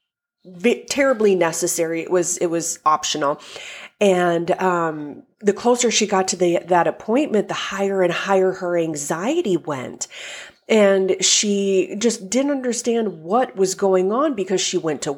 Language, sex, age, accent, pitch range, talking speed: English, female, 30-49, American, 175-225 Hz, 145 wpm